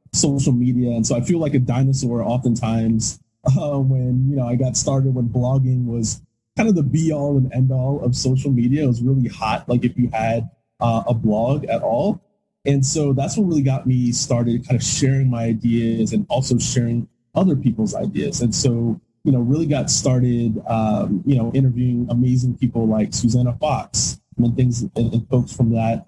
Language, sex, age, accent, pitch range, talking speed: English, male, 20-39, American, 120-140 Hz, 190 wpm